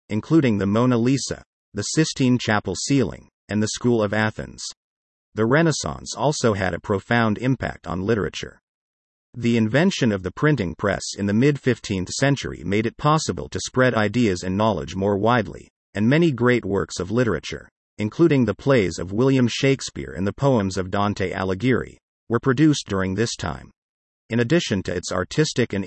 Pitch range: 95-130 Hz